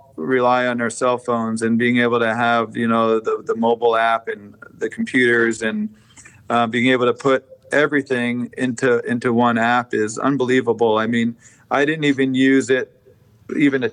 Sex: male